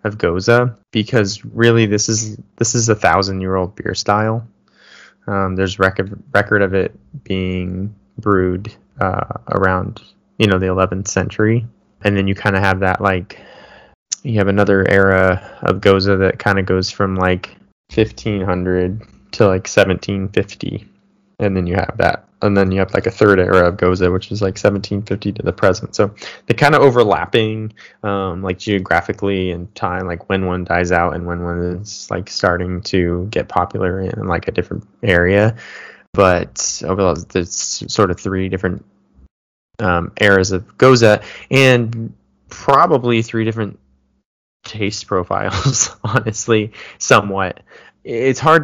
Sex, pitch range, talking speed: male, 95-110 Hz, 155 wpm